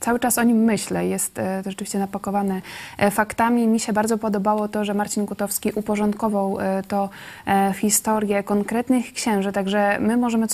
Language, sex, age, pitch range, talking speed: Polish, female, 20-39, 205-235 Hz, 160 wpm